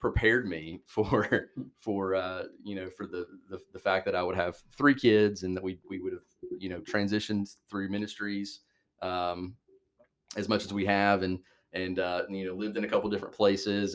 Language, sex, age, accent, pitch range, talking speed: English, male, 30-49, American, 90-100 Hz, 205 wpm